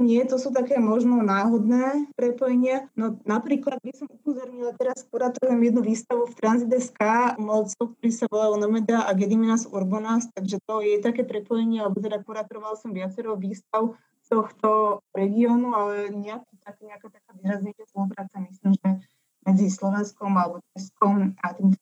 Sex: female